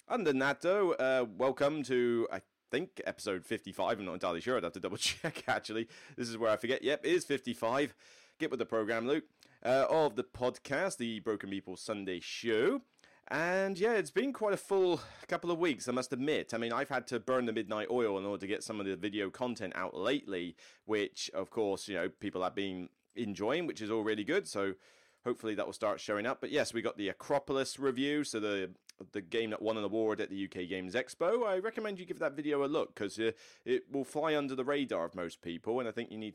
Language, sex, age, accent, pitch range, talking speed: English, male, 30-49, British, 105-145 Hz, 230 wpm